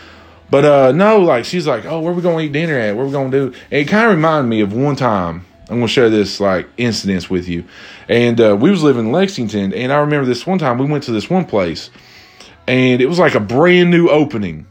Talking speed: 255 wpm